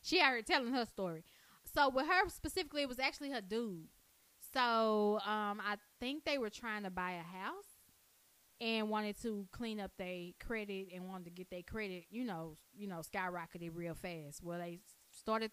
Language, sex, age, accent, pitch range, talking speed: English, female, 10-29, American, 180-215 Hz, 185 wpm